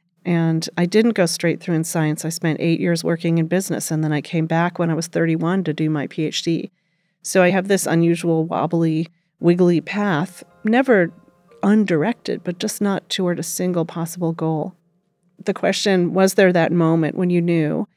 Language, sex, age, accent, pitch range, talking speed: English, female, 40-59, American, 165-200 Hz, 185 wpm